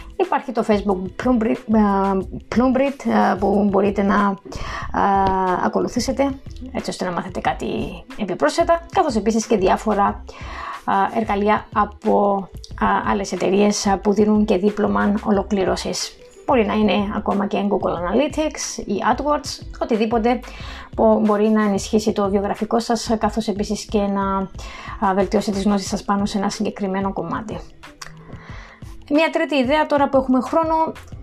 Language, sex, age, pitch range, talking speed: Greek, female, 30-49, 200-255 Hz, 125 wpm